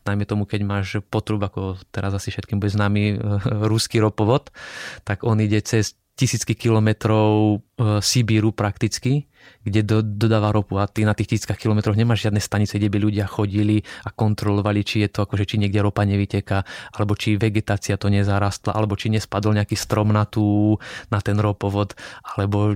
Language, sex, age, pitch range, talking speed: Slovak, male, 20-39, 105-115 Hz, 170 wpm